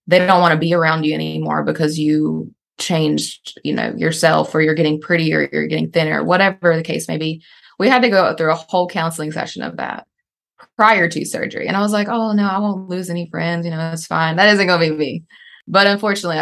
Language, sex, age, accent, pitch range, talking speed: English, female, 20-39, American, 155-185 Hz, 230 wpm